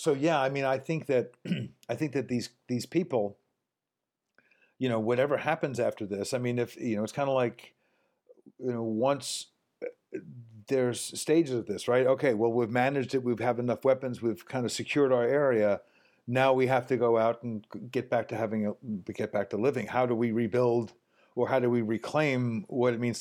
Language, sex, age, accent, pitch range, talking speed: English, male, 50-69, American, 115-130 Hz, 205 wpm